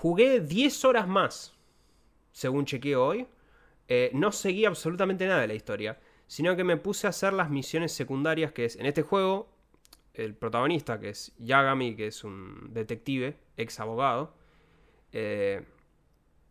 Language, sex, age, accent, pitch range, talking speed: Spanish, male, 20-39, Argentinian, 120-160 Hz, 150 wpm